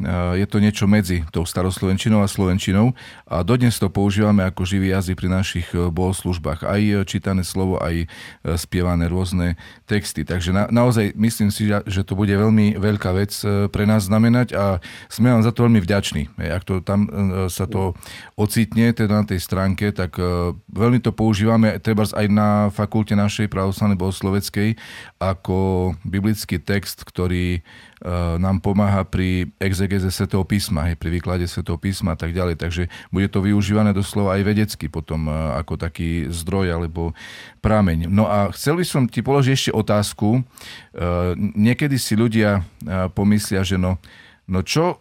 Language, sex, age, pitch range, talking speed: Slovak, male, 40-59, 95-110 Hz, 155 wpm